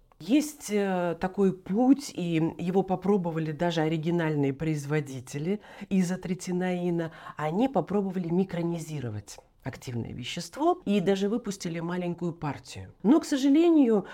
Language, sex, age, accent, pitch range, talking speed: Russian, female, 40-59, native, 145-215 Hz, 100 wpm